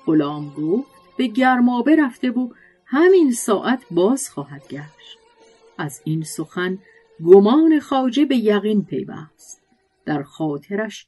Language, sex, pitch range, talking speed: Persian, female, 175-255 Hz, 115 wpm